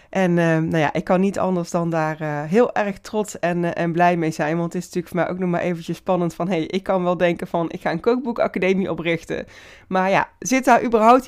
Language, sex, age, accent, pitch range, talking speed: Dutch, female, 20-39, Dutch, 165-215 Hz, 255 wpm